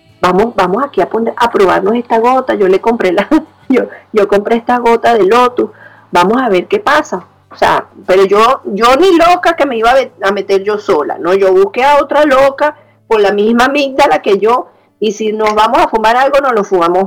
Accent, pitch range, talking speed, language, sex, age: American, 195-275 Hz, 220 wpm, Spanish, female, 40-59